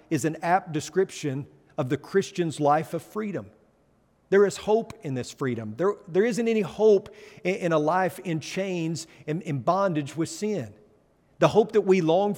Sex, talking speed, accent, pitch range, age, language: male, 175 wpm, American, 150-190 Hz, 50-69, English